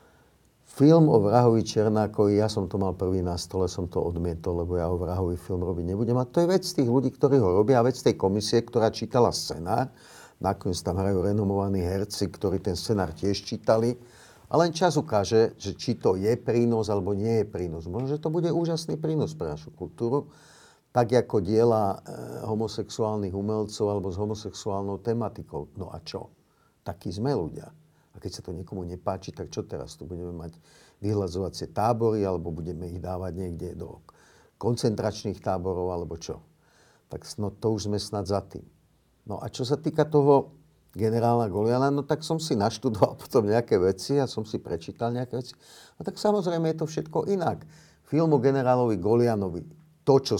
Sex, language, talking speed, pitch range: male, Slovak, 175 wpm, 95-125 Hz